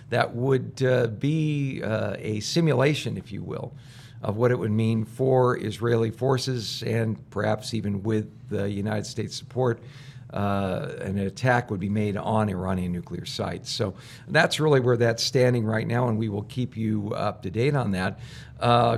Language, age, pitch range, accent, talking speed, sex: English, 50-69, 105-130 Hz, American, 175 wpm, male